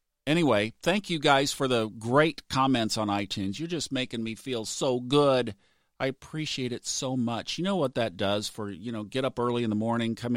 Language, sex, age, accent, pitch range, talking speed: English, male, 50-69, American, 105-130 Hz, 215 wpm